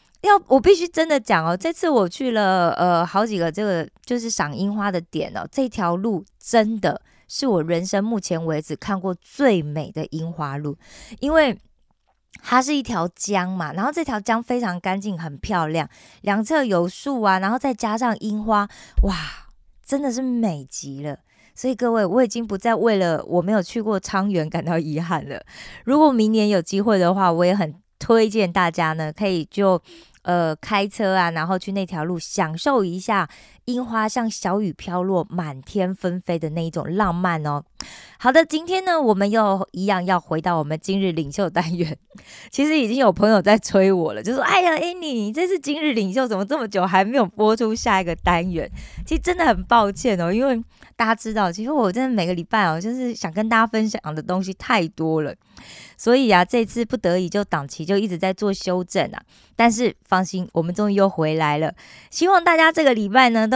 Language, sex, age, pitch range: Korean, female, 20-39, 175-235 Hz